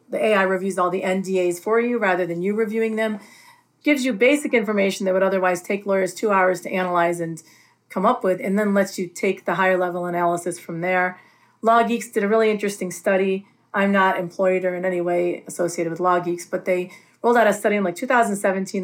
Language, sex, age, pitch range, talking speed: English, female, 40-59, 180-210 Hz, 215 wpm